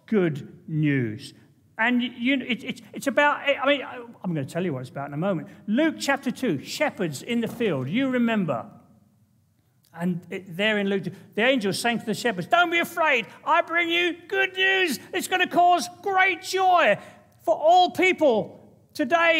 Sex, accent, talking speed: male, British, 185 wpm